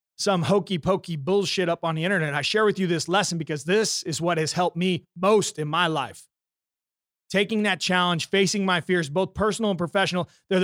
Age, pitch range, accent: 30-49, 150-185 Hz, American